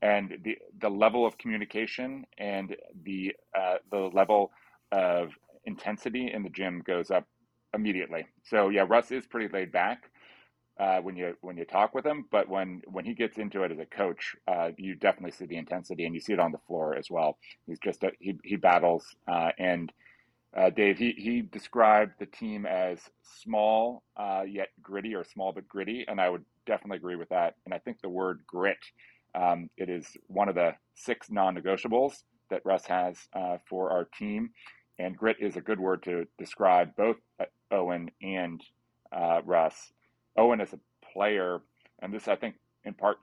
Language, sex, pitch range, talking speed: English, male, 90-105 Hz, 185 wpm